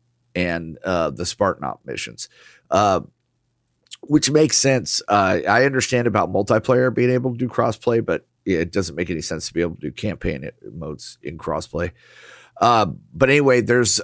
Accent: American